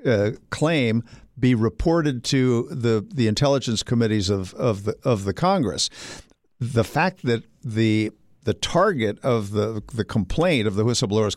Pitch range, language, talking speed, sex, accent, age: 115-140 Hz, English, 150 wpm, male, American, 60-79